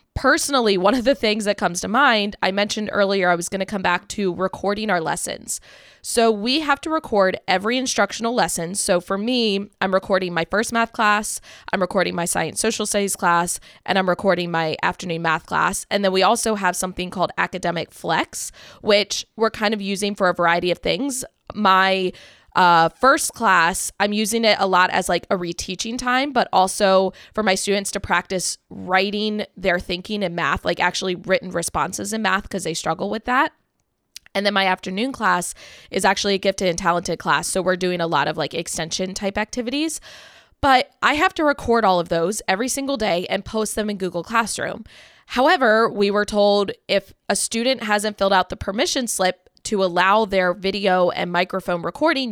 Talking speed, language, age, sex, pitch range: 195 wpm, English, 20-39, female, 185-230 Hz